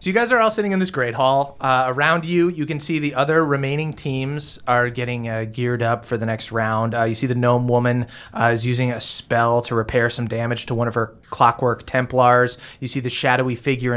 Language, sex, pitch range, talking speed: English, male, 115-130 Hz, 235 wpm